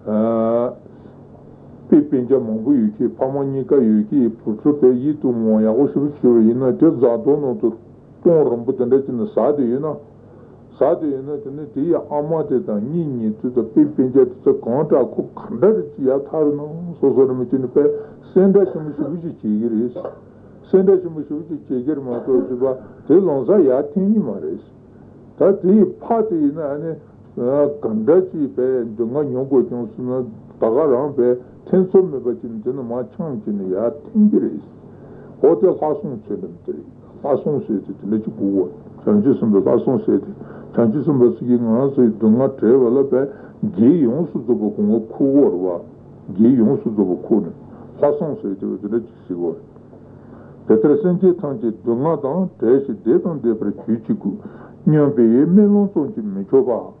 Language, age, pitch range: Italian, 60-79, 115-160 Hz